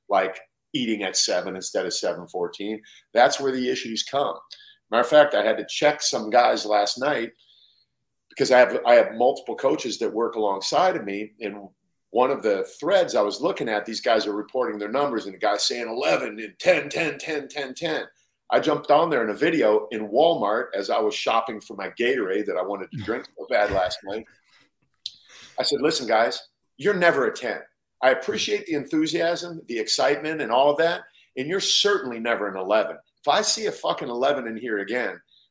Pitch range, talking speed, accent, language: 120-180 Hz, 200 wpm, American, English